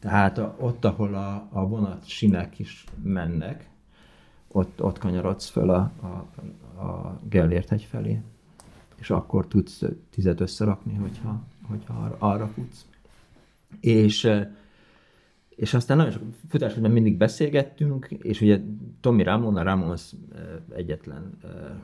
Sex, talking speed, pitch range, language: male, 115 wpm, 90-120 Hz, Hungarian